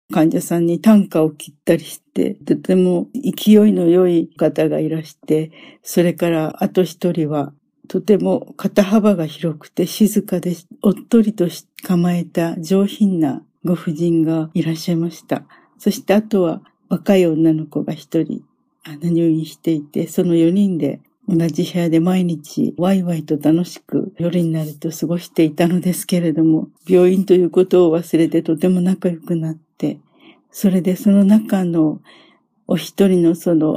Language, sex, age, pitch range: Japanese, female, 50-69, 165-195 Hz